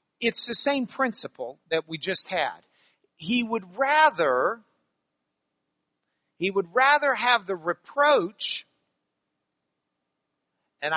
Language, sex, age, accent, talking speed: English, male, 50-69, American, 100 wpm